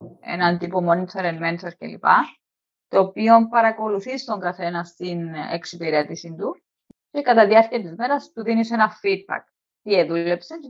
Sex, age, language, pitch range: female, 20-39, Greek, 175-235 Hz